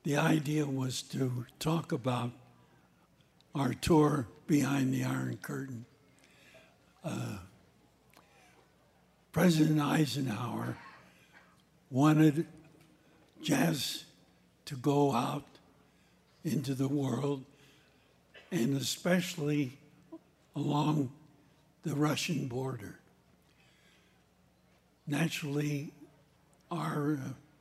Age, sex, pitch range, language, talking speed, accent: 60-79, male, 135-160 Hz, English, 65 wpm, American